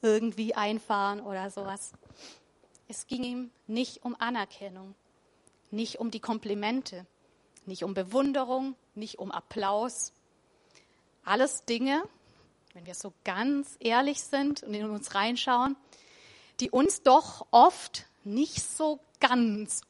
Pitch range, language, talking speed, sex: 205-245 Hz, German, 120 wpm, female